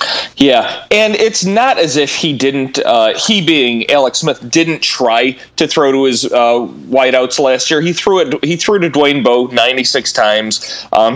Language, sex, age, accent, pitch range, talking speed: English, male, 30-49, American, 125-165 Hz, 190 wpm